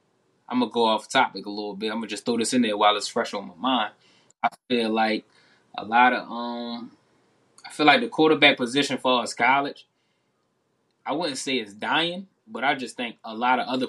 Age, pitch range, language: 10-29, 105-135 Hz, English